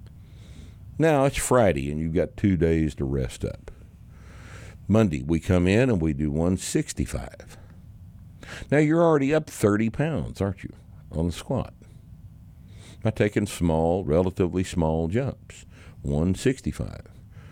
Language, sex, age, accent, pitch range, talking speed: English, male, 60-79, American, 80-110 Hz, 125 wpm